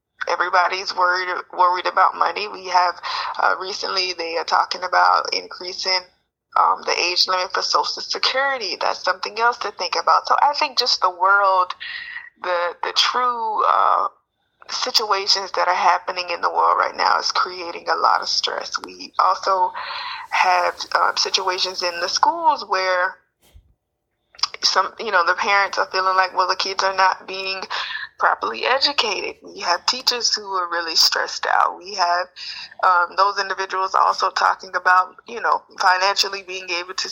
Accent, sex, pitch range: American, female, 185-270 Hz